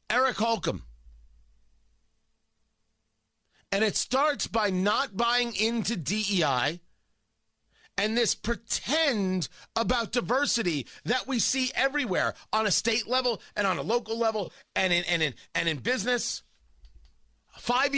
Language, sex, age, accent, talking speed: English, male, 40-59, American, 120 wpm